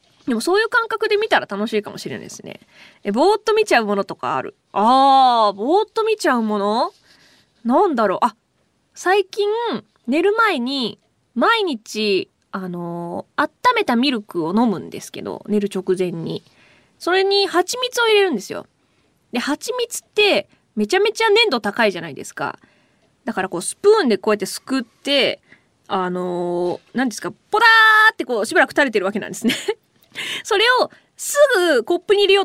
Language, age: Japanese, 20-39